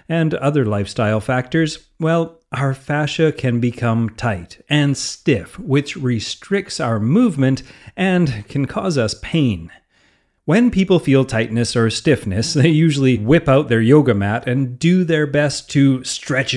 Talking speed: 145 wpm